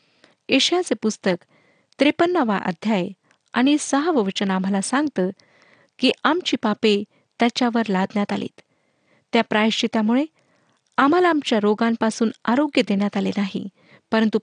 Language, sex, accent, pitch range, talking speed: Marathi, female, native, 205-265 Hz, 105 wpm